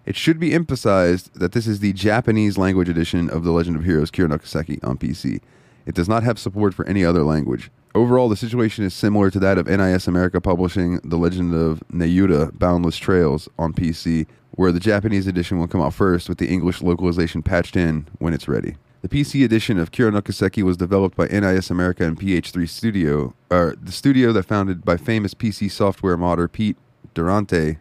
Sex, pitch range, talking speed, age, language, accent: male, 85-110 Hz, 190 wpm, 20-39, English, American